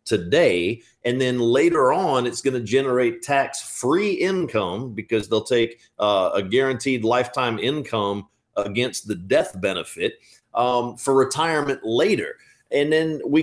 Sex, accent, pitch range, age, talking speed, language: male, American, 115-150 Hz, 40-59, 135 wpm, English